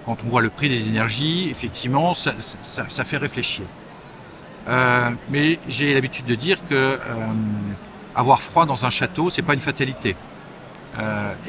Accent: French